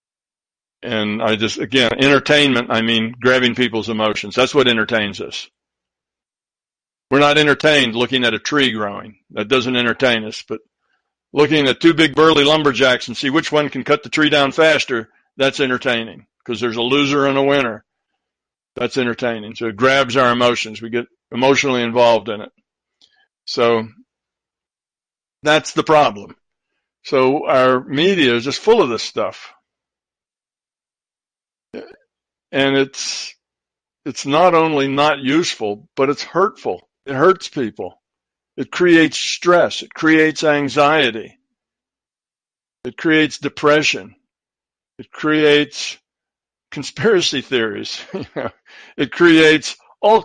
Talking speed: 130 wpm